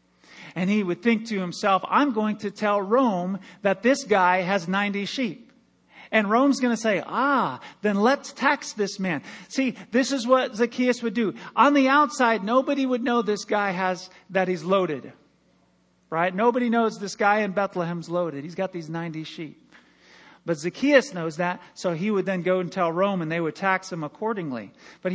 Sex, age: male, 40-59